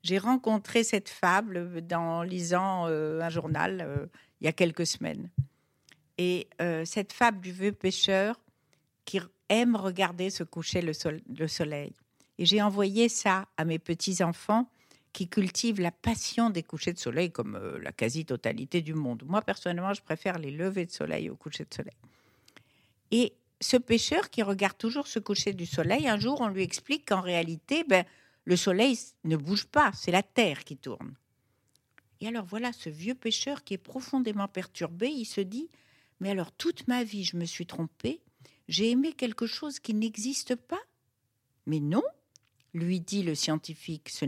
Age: 60-79